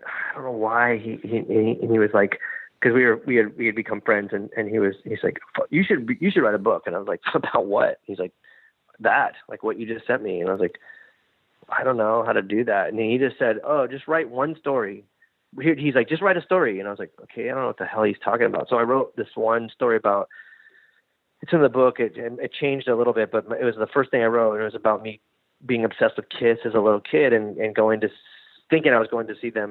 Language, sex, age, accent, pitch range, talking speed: English, male, 30-49, American, 105-135 Hz, 280 wpm